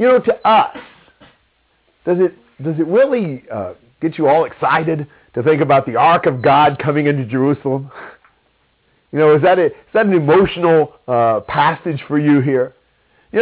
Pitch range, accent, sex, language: 140-195 Hz, American, male, English